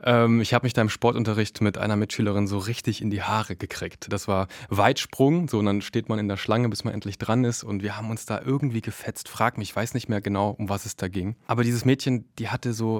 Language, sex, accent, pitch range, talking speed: German, male, German, 105-120 Hz, 260 wpm